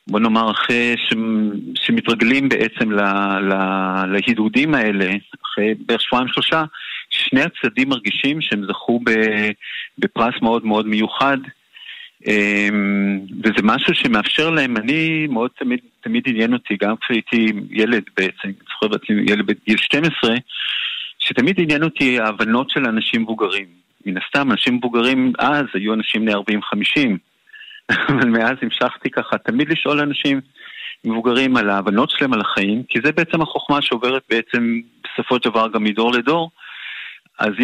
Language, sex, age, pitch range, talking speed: Hebrew, male, 50-69, 105-155 Hz, 130 wpm